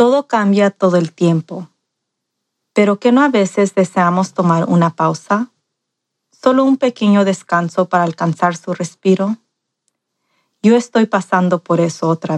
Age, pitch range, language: 30-49, 180-220 Hz, Spanish